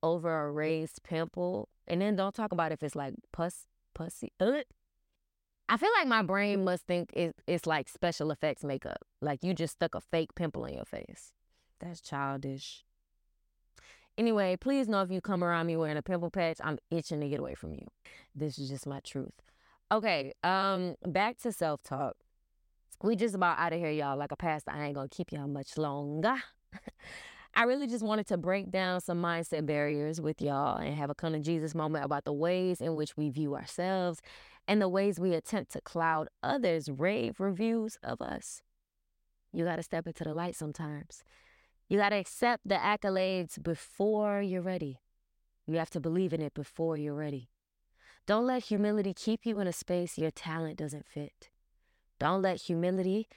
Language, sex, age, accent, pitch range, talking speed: English, female, 10-29, American, 150-190 Hz, 185 wpm